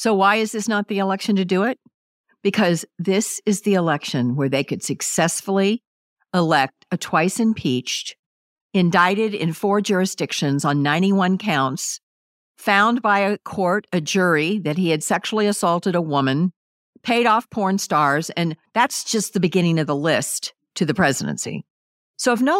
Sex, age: female, 50-69